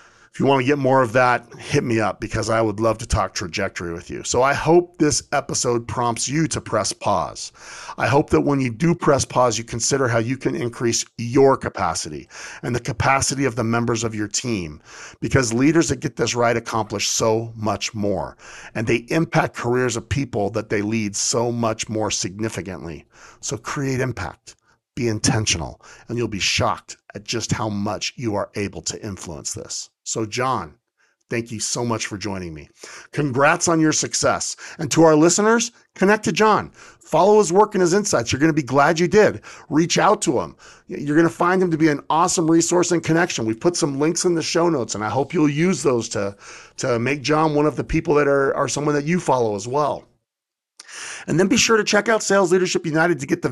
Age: 40-59